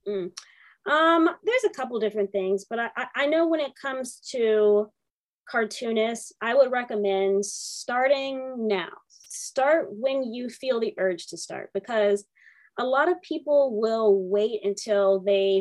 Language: English